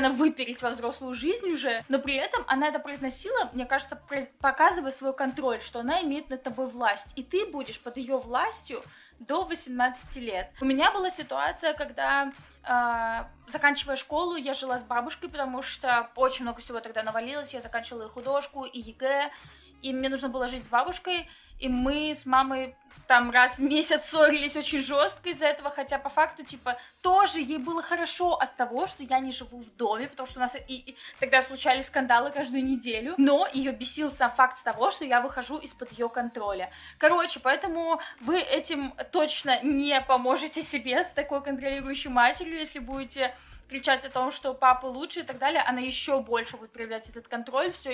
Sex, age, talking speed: female, 20-39, 180 wpm